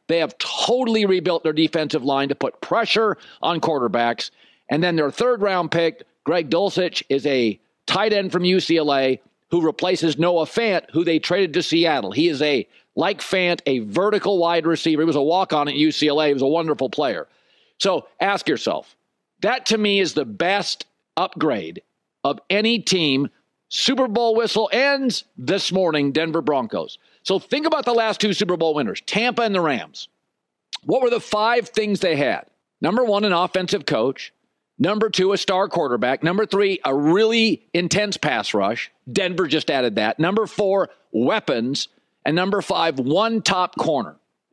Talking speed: 170 wpm